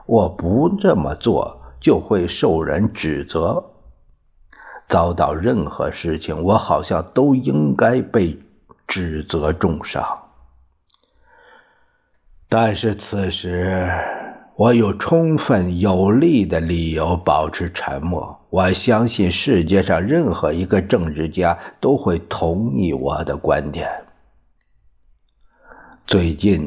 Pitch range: 80-100 Hz